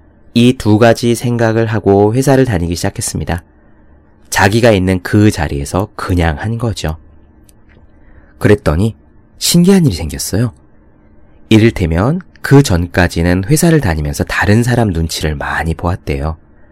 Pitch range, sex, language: 80-115 Hz, male, Korean